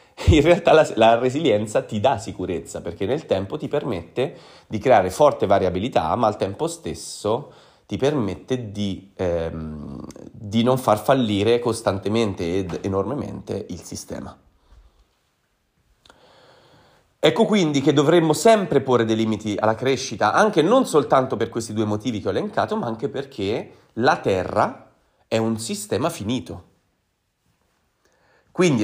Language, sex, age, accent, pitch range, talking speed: Italian, male, 30-49, native, 105-145 Hz, 135 wpm